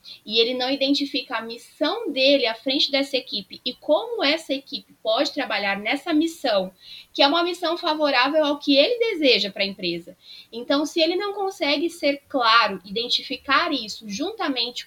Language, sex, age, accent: Portuguese, female, 20-39, Brazilian